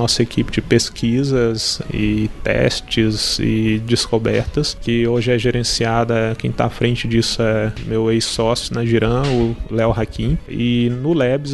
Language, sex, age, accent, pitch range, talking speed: Portuguese, male, 20-39, Brazilian, 115-130 Hz, 145 wpm